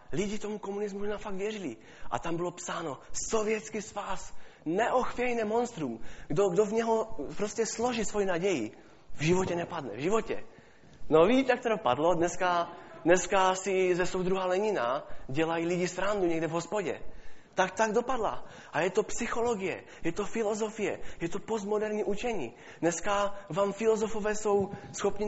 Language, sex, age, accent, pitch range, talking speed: Czech, male, 20-39, native, 160-210 Hz, 145 wpm